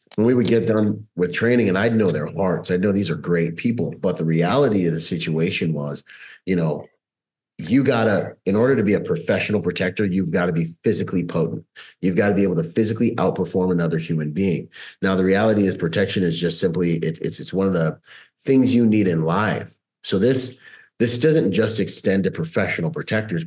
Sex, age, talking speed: male, 30-49, 205 wpm